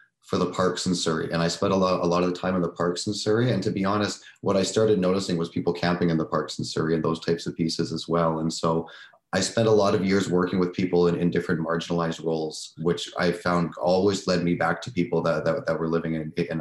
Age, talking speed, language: 30-49, 270 wpm, English